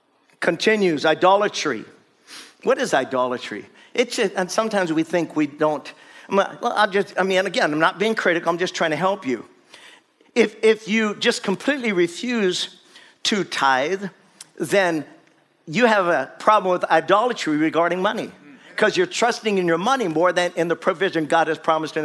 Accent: American